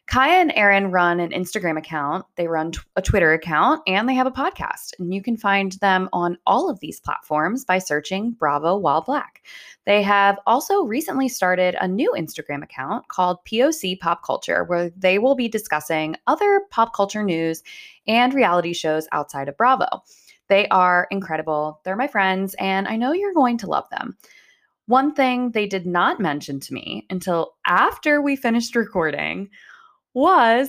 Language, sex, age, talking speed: English, female, 20-39, 175 wpm